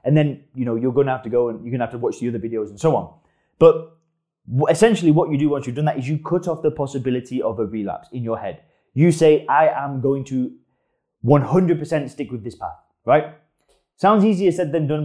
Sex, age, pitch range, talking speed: male, 20-39, 130-165 Hz, 235 wpm